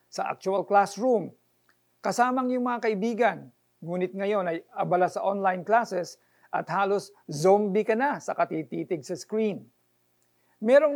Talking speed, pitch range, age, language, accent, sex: 130 wpm, 135-205 Hz, 50-69, Filipino, native, male